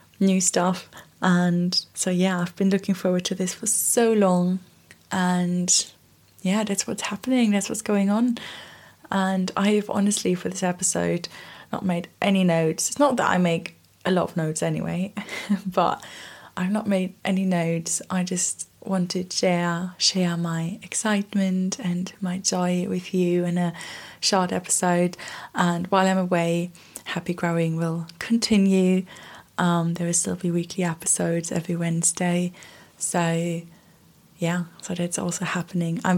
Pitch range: 175-200 Hz